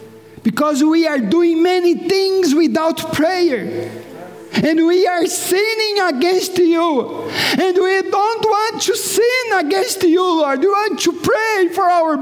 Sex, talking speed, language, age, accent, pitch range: male, 140 wpm, English, 40-59, Brazilian, 320-385 Hz